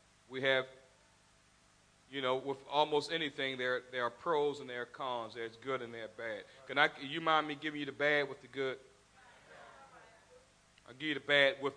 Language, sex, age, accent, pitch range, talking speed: English, male, 40-59, American, 150-245 Hz, 195 wpm